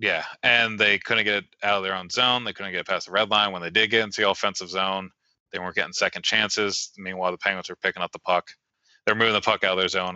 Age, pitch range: 20-39, 90-110 Hz